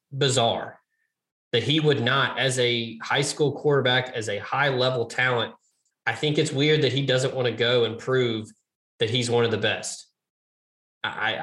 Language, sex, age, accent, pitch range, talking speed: English, male, 20-39, American, 115-150 Hz, 180 wpm